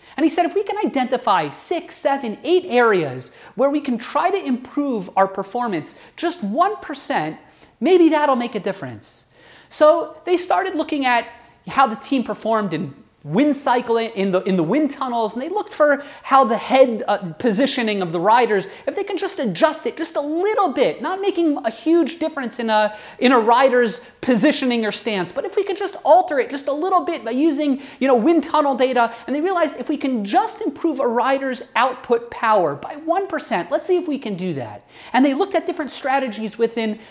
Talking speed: 200 wpm